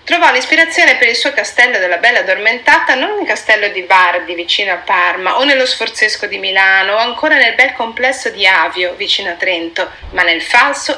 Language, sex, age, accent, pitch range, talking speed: Italian, female, 30-49, native, 200-260 Hz, 190 wpm